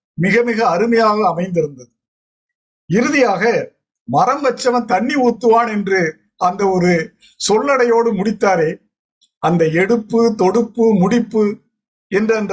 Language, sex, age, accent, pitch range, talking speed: Tamil, male, 50-69, native, 190-245 Hz, 90 wpm